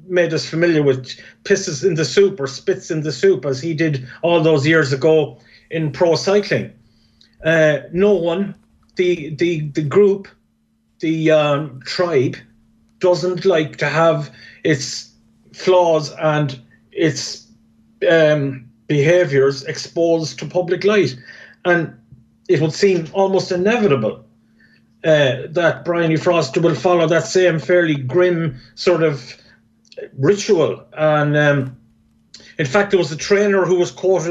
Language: English